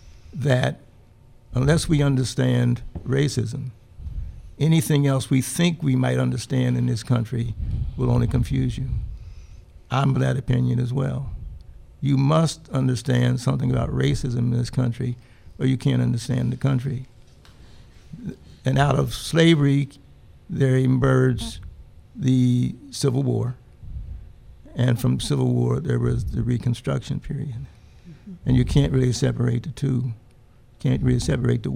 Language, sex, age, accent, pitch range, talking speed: English, male, 60-79, American, 110-135 Hz, 130 wpm